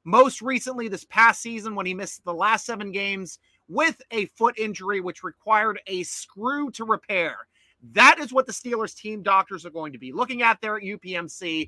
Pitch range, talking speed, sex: 185-260 Hz, 195 wpm, male